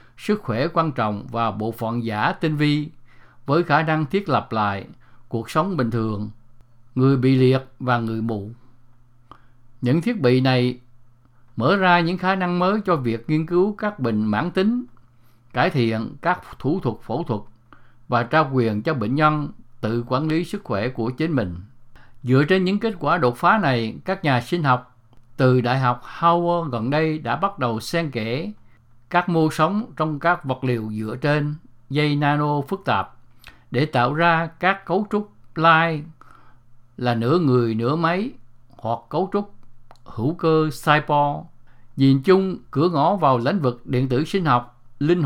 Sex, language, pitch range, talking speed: male, English, 120-165 Hz, 175 wpm